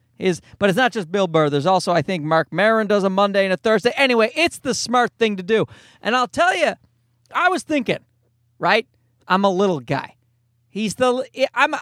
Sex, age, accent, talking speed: male, 40-59, American, 210 wpm